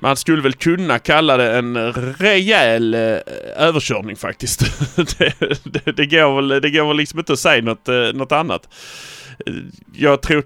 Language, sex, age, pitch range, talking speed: Swedish, male, 30-49, 115-150 Hz, 165 wpm